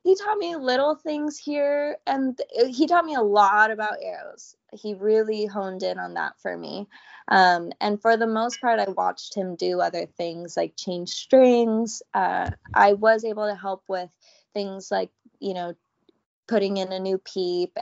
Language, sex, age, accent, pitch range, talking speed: English, female, 20-39, American, 180-215 Hz, 180 wpm